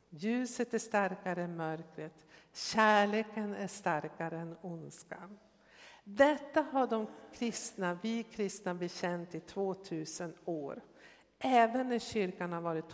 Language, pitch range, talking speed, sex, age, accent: Swedish, 170-215 Hz, 115 wpm, female, 60-79, native